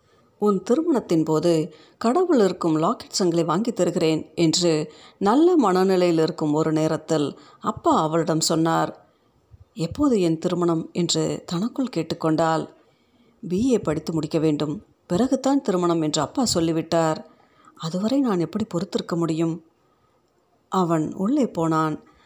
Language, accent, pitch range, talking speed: Tamil, native, 160-205 Hz, 110 wpm